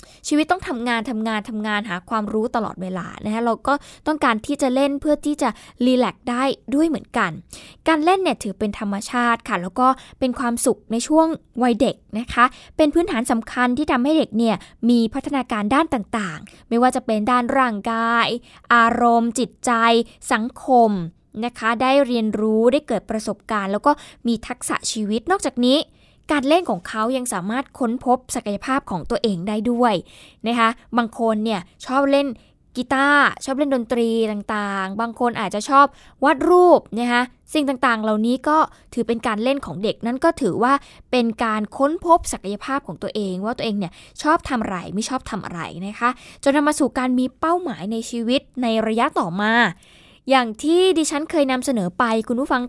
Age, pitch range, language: 10-29, 225-275 Hz, Thai